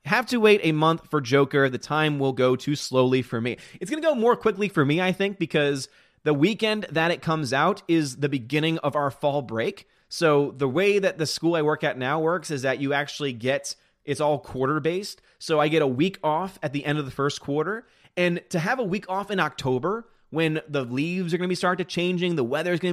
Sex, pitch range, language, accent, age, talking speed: male, 130-180 Hz, English, American, 30-49, 245 wpm